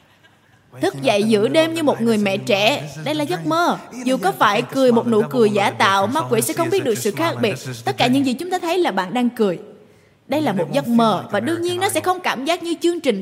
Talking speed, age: 265 wpm, 20-39